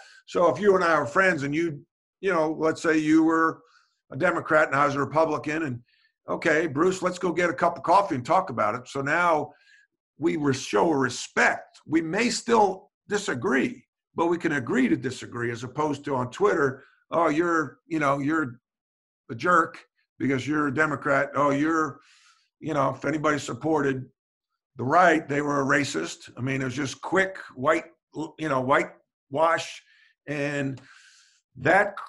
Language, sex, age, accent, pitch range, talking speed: English, male, 50-69, American, 140-200 Hz, 175 wpm